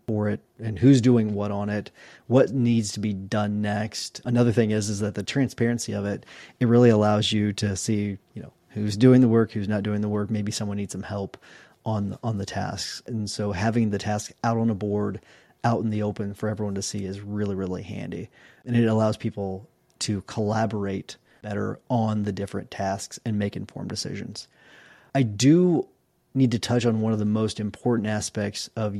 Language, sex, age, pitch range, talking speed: English, male, 30-49, 105-115 Hz, 205 wpm